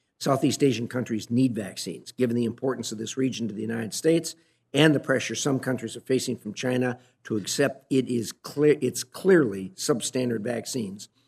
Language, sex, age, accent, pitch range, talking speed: English, male, 50-69, American, 110-135 Hz, 170 wpm